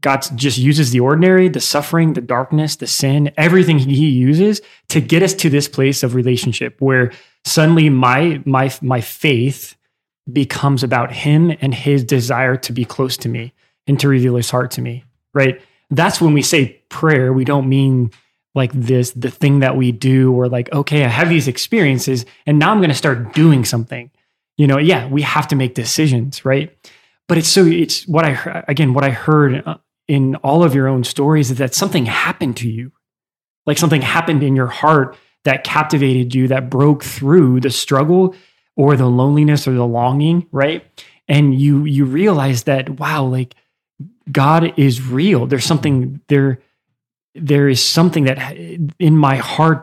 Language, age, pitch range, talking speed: English, 20-39, 130-155 Hz, 180 wpm